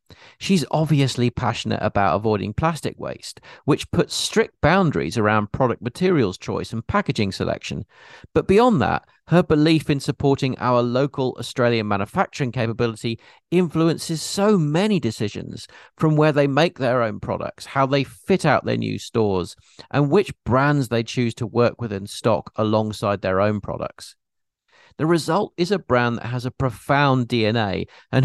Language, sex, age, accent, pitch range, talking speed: English, male, 40-59, British, 110-155 Hz, 155 wpm